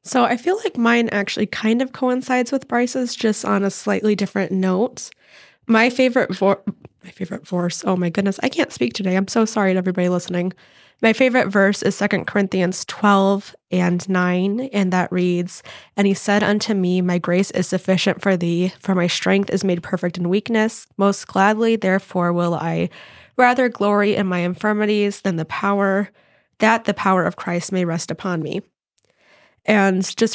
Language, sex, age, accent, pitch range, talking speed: English, female, 10-29, American, 180-200 Hz, 175 wpm